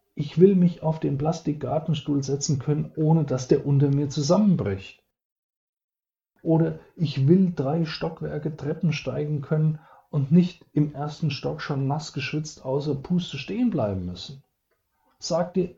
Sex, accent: male, German